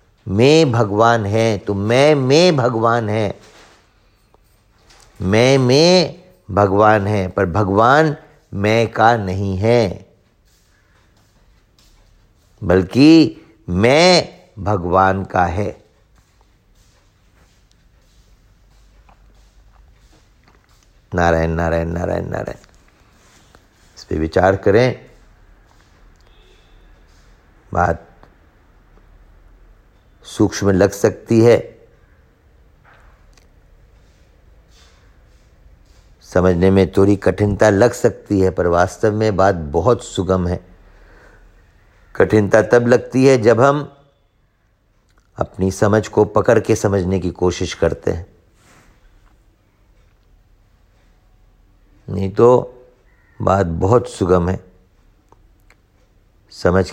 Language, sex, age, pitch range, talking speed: Hindi, male, 50-69, 95-110 Hz, 80 wpm